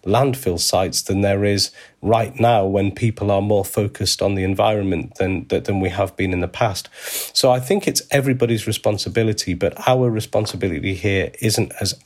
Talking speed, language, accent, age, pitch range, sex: 175 wpm, English, British, 40-59, 95-110 Hz, male